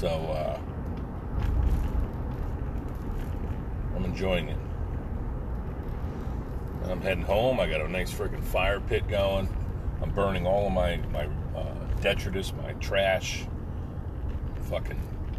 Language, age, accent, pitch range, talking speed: English, 40-59, American, 85-100 Hz, 110 wpm